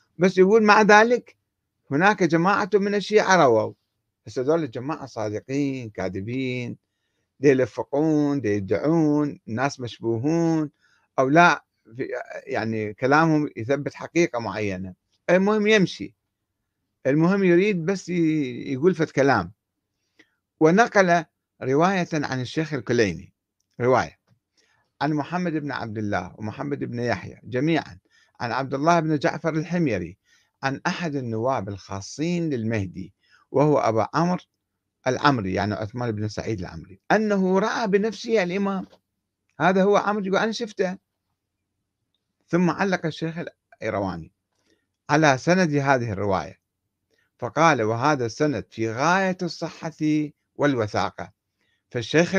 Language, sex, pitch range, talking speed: Arabic, male, 105-165 Hz, 105 wpm